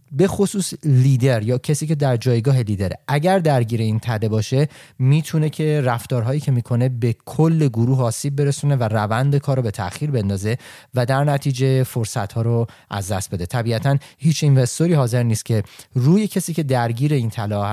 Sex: male